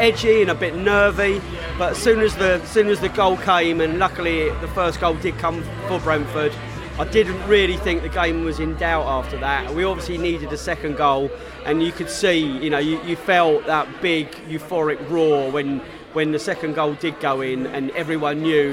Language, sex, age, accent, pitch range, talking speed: English, male, 30-49, British, 150-190 Hz, 210 wpm